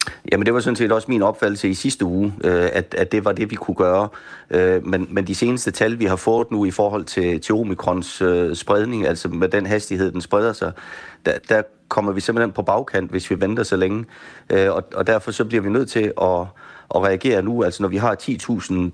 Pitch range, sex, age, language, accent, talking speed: 90-110 Hz, male, 30-49, Danish, native, 205 wpm